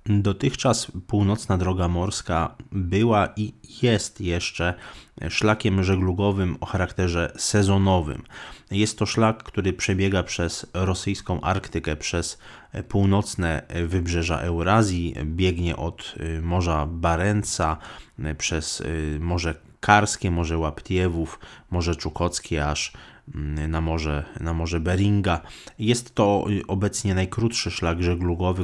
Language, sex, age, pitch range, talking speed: Polish, male, 20-39, 85-100 Hz, 100 wpm